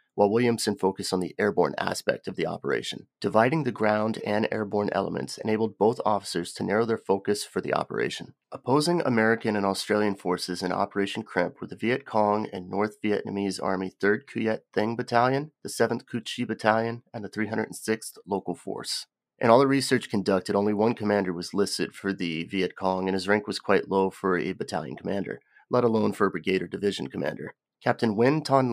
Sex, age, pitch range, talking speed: male, 30-49, 95-115 Hz, 190 wpm